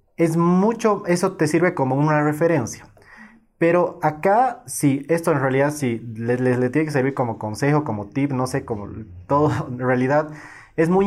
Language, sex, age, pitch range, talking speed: Spanish, male, 30-49, 120-150 Hz, 185 wpm